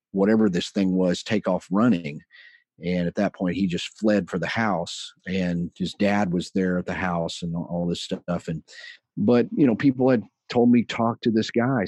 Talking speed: 205 wpm